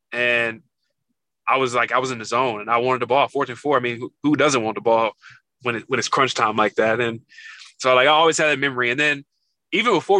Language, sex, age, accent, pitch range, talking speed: English, male, 20-39, American, 120-155 Hz, 265 wpm